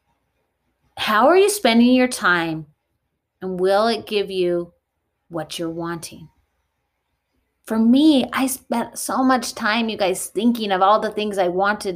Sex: female